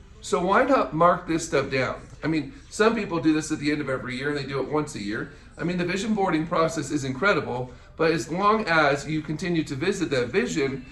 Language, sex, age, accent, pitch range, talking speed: English, male, 50-69, American, 145-185 Hz, 240 wpm